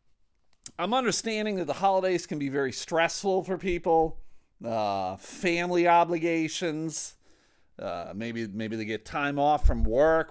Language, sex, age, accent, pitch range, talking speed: English, male, 40-59, American, 135-200 Hz, 135 wpm